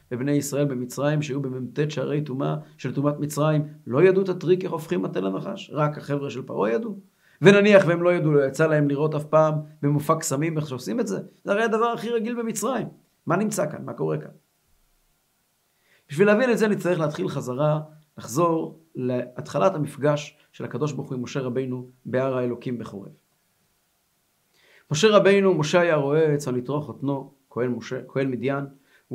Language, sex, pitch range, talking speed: Hebrew, male, 135-170 Hz, 160 wpm